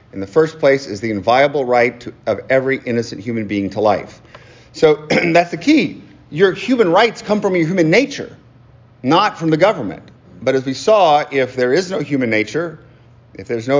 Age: 40-59